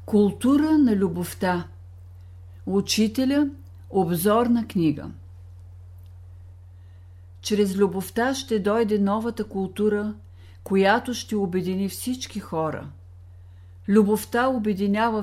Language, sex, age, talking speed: Bulgarian, female, 50-69, 85 wpm